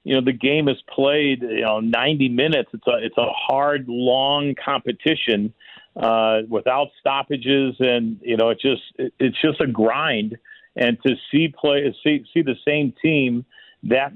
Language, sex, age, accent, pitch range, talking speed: English, male, 50-69, American, 115-140 Hz, 170 wpm